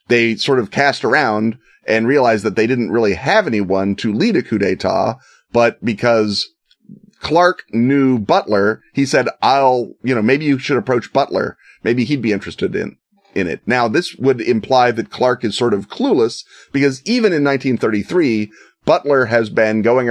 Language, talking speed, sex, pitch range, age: English, 175 wpm, male, 105-130 Hz, 30-49